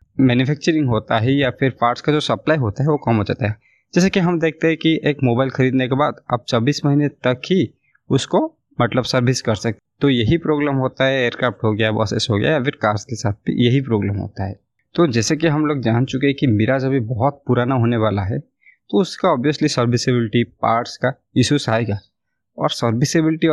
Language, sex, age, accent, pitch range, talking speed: Hindi, male, 20-39, native, 115-150 Hz, 215 wpm